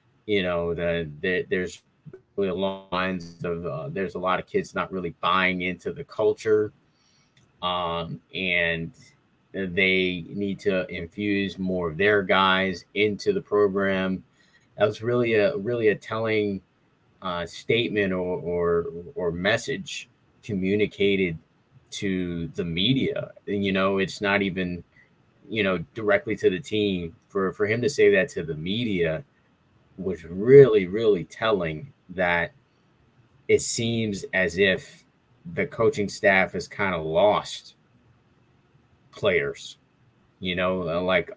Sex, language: male, English